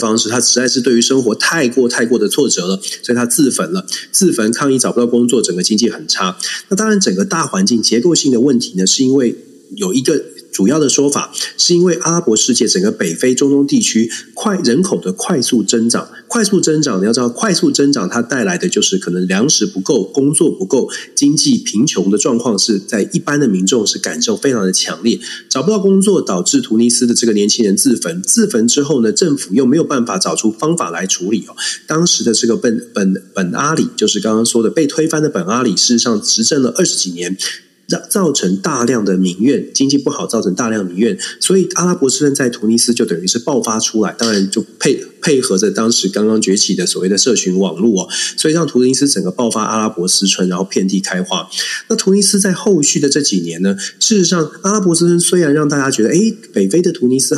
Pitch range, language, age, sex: 110-175 Hz, Chinese, 30-49, male